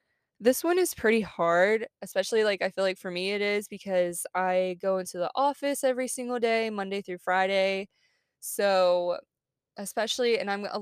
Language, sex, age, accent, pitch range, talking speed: English, female, 20-39, American, 180-225 Hz, 170 wpm